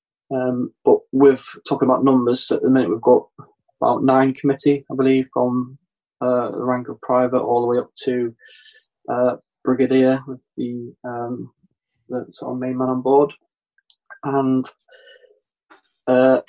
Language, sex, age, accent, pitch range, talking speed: English, male, 20-39, British, 125-135 Hz, 150 wpm